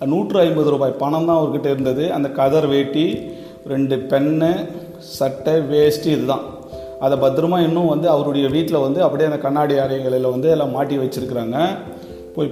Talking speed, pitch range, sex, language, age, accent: 155 wpm, 130-155 Hz, male, Tamil, 40-59, native